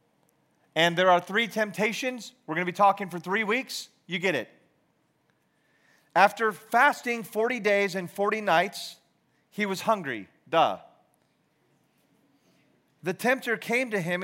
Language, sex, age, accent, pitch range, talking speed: English, male, 40-59, American, 150-185 Hz, 135 wpm